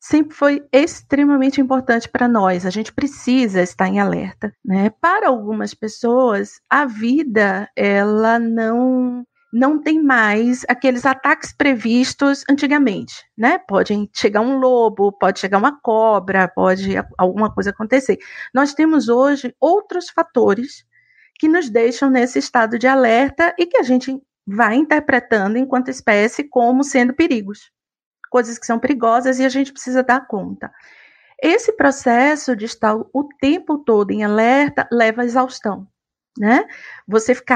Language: Portuguese